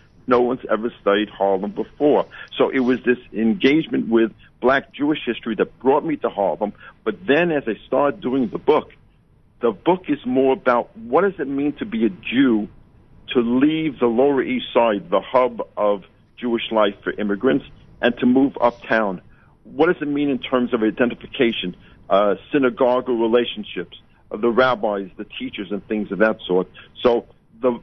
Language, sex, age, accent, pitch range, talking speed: English, male, 50-69, American, 110-135 Hz, 175 wpm